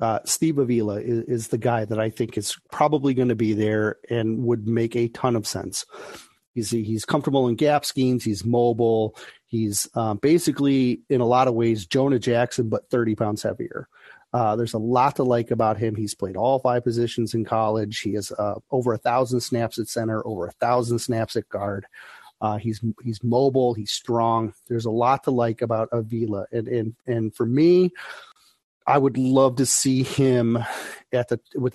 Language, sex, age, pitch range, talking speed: English, male, 40-59, 115-130 Hz, 195 wpm